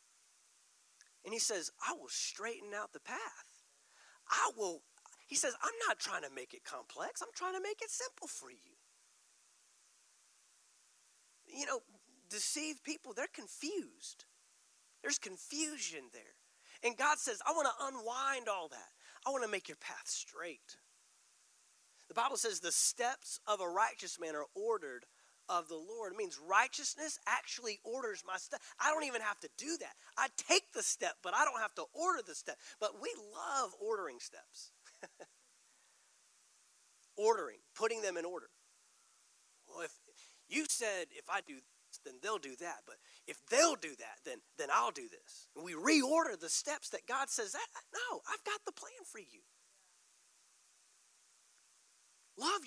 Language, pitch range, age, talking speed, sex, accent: English, 265-430 Hz, 30-49, 160 wpm, male, American